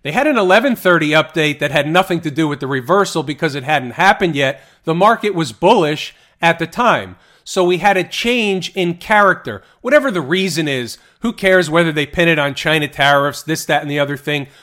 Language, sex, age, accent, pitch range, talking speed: English, male, 40-59, American, 155-195 Hz, 210 wpm